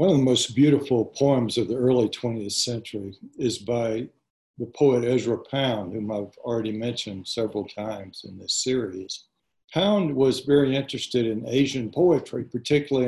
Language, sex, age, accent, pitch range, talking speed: English, male, 60-79, American, 110-135 Hz, 155 wpm